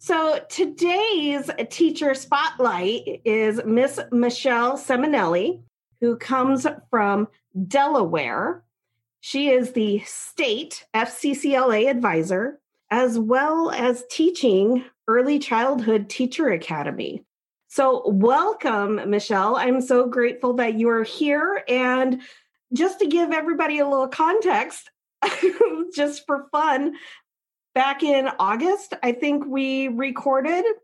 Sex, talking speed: female, 105 wpm